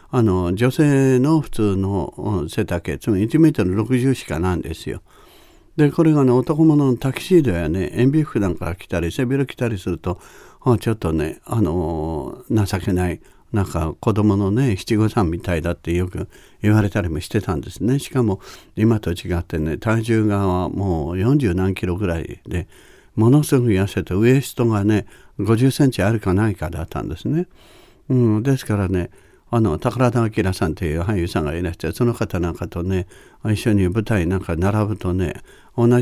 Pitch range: 90-130 Hz